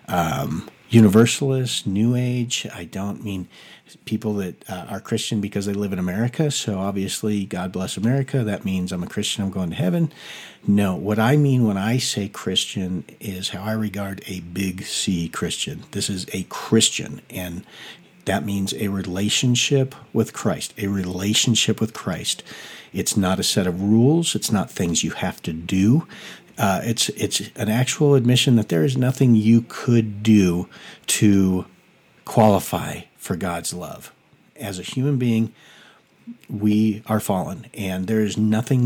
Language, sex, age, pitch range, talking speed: English, male, 50-69, 100-120 Hz, 160 wpm